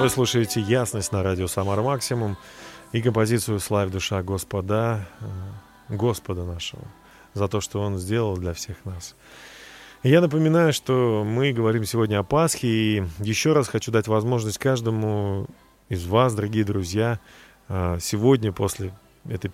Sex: male